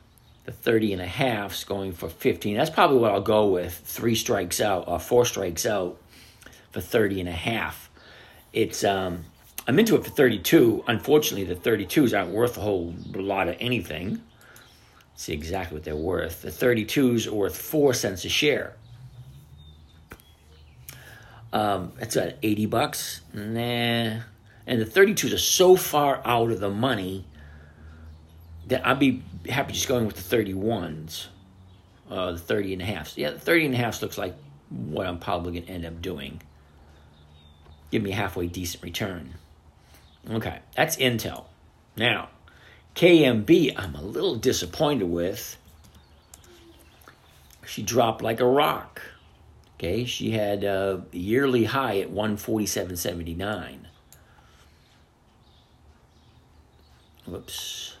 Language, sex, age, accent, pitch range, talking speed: English, male, 50-69, American, 80-115 Hz, 135 wpm